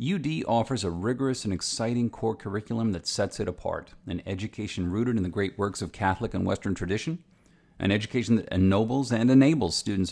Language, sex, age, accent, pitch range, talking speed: English, male, 50-69, American, 100-130 Hz, 185 wpm